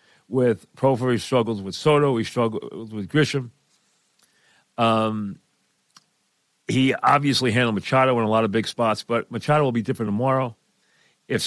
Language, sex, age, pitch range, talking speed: English, male, 40-59, 115-145 Hz, 145 wpm